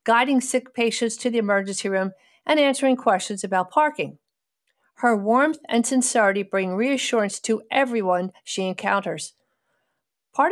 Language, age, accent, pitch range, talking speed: English, 50-69, American, 200-265 Hz, 130 wpm